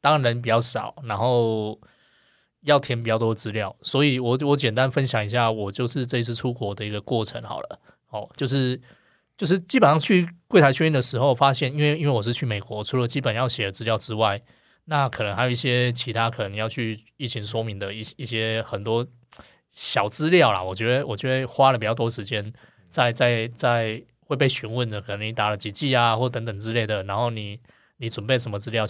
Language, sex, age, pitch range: Chinese, male, 20-39, 110-135 Hz